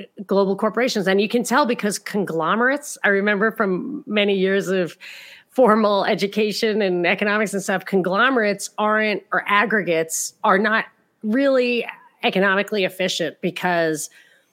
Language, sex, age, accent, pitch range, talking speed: English, female, 30-49, American, 175-215 Hz, 125 wpm